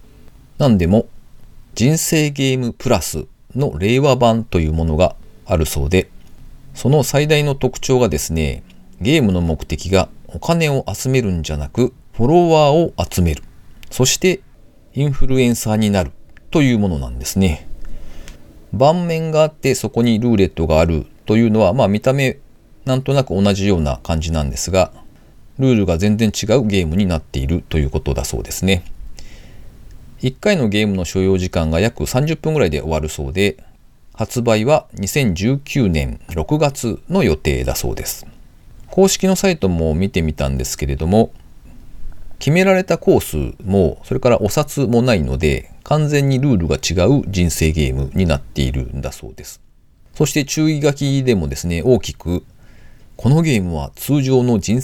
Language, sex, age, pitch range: Japanese, male, 40-59, 80-130 Hz